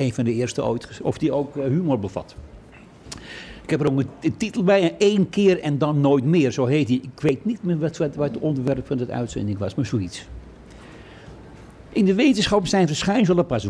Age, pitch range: 60-79, 125-170 Hz